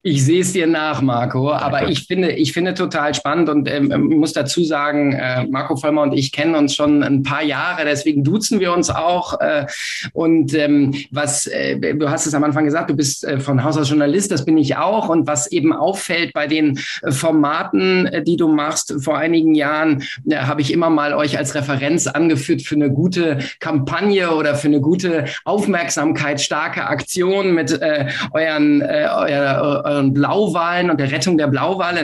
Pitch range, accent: 150-190 Hz, German